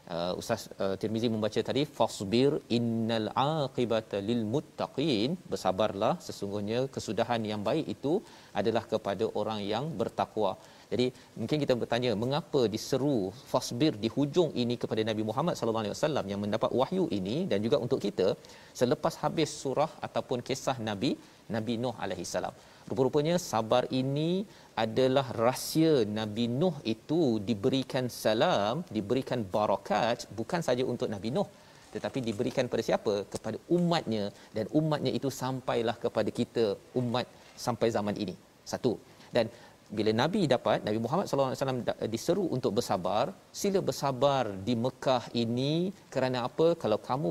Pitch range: 110-140 Hz